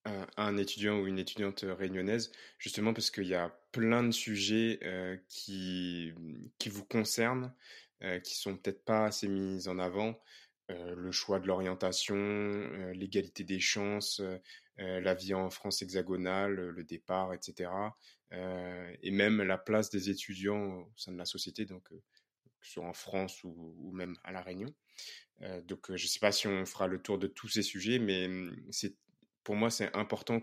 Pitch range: 95-105 Hz